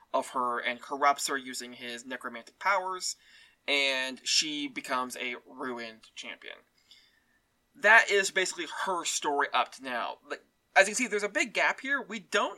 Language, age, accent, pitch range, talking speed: English, 20-39, American, 130-220 Hz, 160 wpm